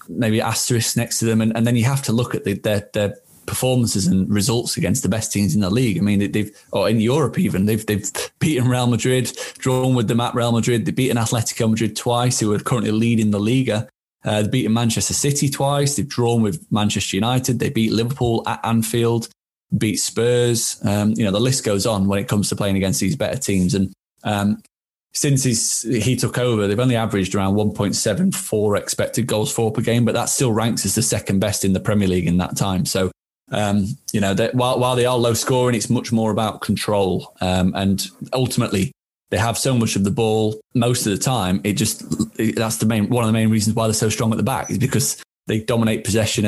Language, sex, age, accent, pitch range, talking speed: English, male, 20-39, British, 105-120 Hz, 230 wpm